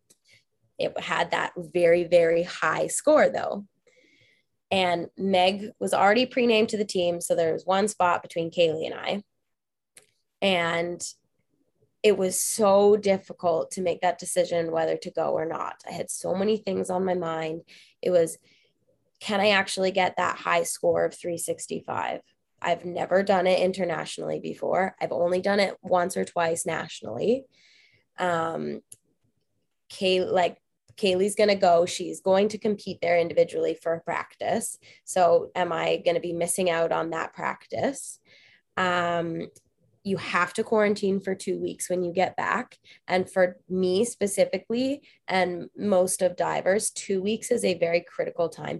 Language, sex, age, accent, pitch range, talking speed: English, female, 20-39, American, 170-200 Hz, 155 wpm